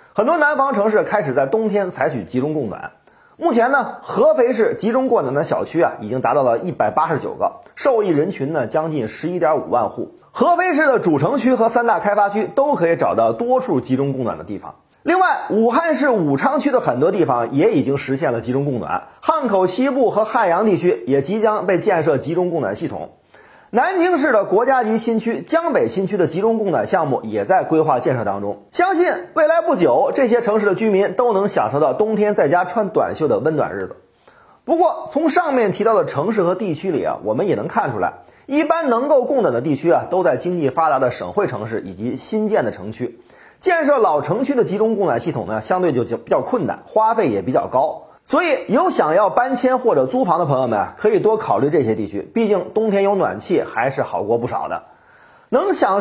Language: Chinese